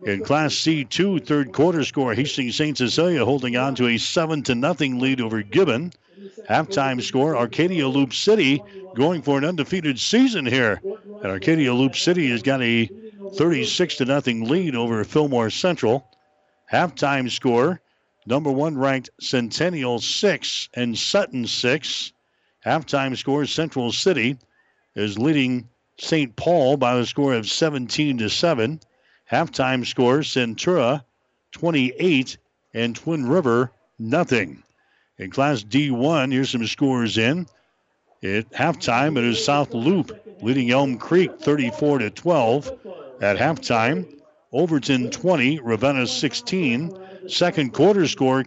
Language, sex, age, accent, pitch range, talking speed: English, male, 60-79, American, 125-160 Hz, 125 wpm